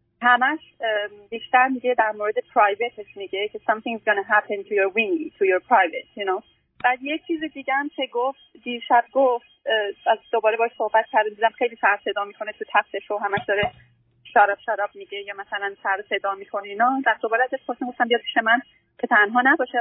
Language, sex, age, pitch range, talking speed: Persian, female, 30-49, 195-245 Hz, 180 wpm